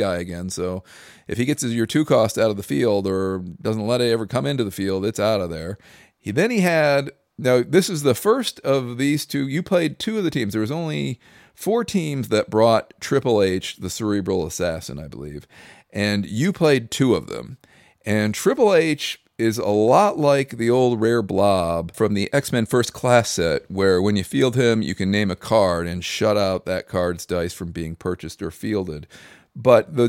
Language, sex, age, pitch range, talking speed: English, male, 40-59, 95-140 Hz, 210 wpm